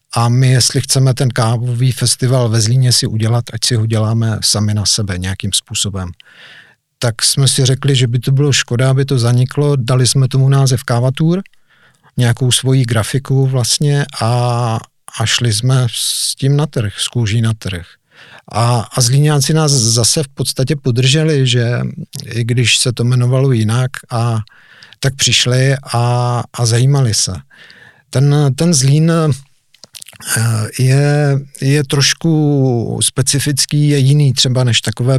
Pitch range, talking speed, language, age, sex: 115-135 Hz, 150 wpm, Czech, 50-69, male